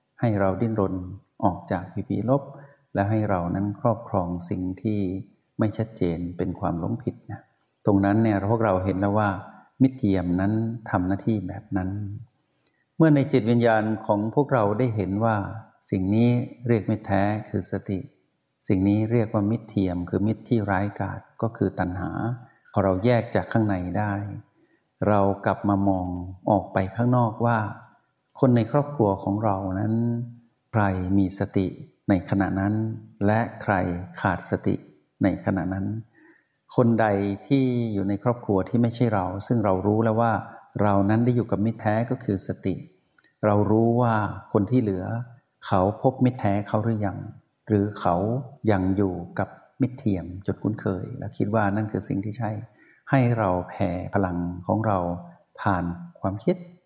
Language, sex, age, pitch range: Thai, male, 60-79, 95-115 Hz